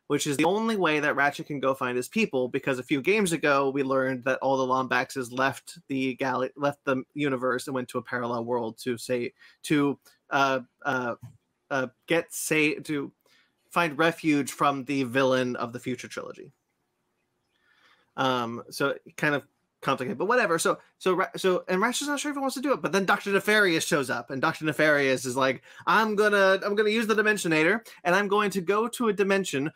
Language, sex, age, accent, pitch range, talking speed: English, male, 30-49, American, 130-170 Hz, 200 wpm